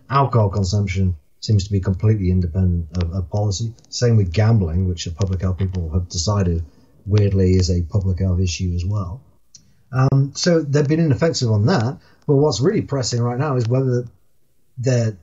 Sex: male